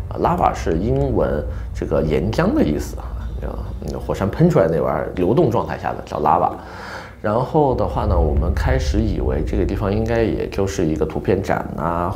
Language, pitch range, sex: Chinese, 75-95 Hz, male